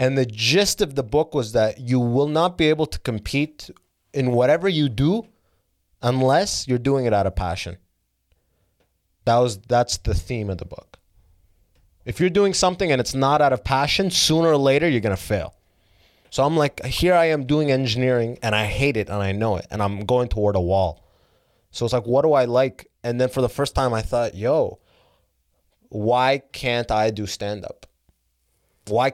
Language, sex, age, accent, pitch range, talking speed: English, male, 20-39, American, 95-130 Hz, 195 wpm